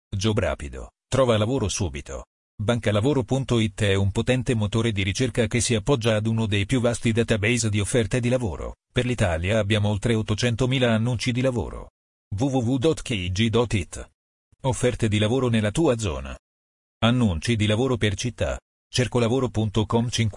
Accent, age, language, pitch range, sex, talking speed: native, 40-59, Italian, 105-125 Hz, male, 135 wpm